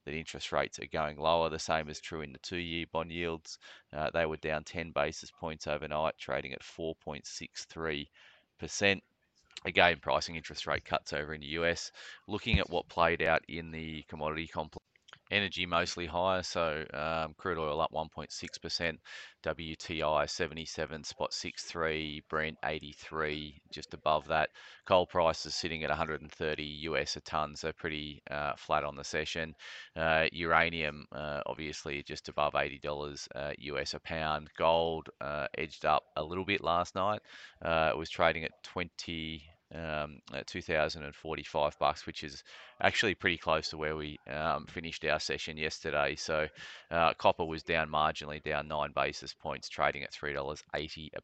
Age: 20-39